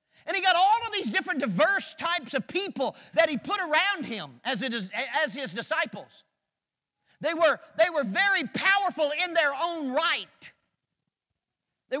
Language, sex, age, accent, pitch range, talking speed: English, male, 40-59, American, 220-315 Hz, 160 wpm